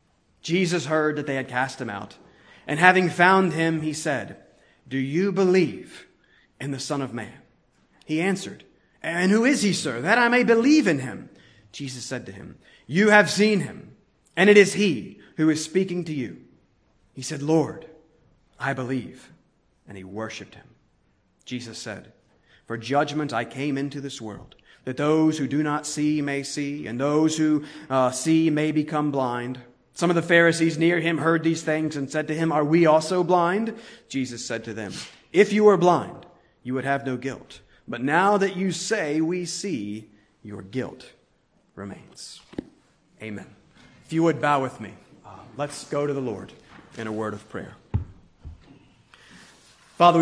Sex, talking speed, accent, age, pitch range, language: male, 175 wpm, American, 30-49, 130-175 Hz, English